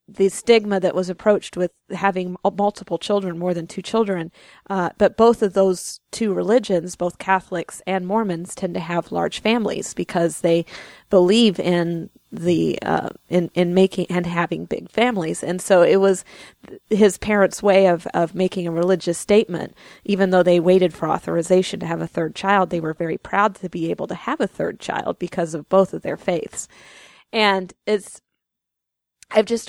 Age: 30-49